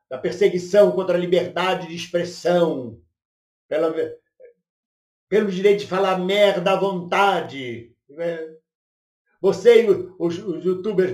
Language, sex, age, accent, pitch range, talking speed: Portuguese, male, 60-79, Brazilian, 160-195 Hz, 100 wpm